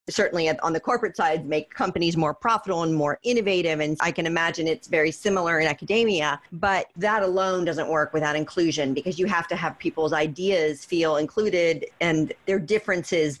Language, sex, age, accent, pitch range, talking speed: English, female, 40-59, American, 155-185 Hz, 180 wpm